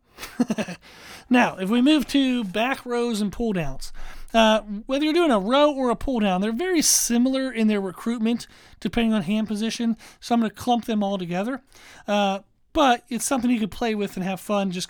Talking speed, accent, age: 200 wpm, American, 40-59